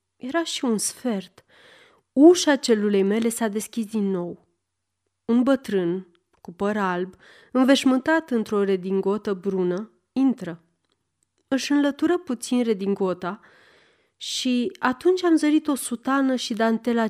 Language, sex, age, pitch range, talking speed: Romanian, female, 30-49, 190-260 Hz, 115 wpm